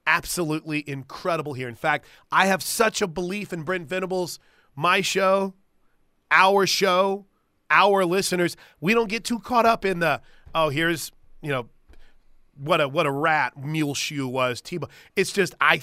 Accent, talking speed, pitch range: American, 160 wpm, 150-205 Hz